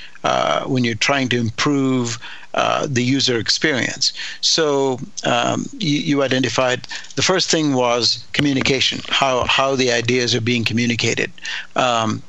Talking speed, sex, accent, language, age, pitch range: 135 wpm, male, American, English, 60-79, 120-140 Hz